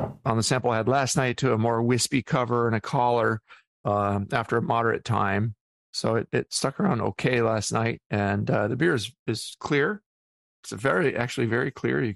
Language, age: English, 40-59